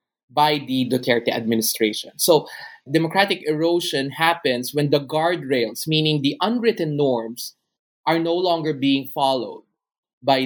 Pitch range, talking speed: 135-170 Hz, 120 wpm